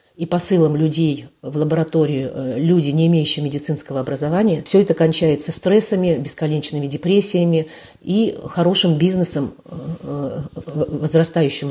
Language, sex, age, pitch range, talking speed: Russian, female, 40-59, 150-180 Hz, 100 wpm